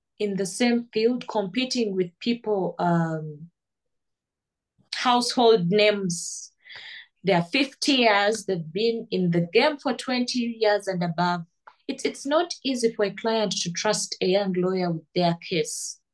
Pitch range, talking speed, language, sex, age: 185-235 Hz, 145 wpm, English, female, 20-39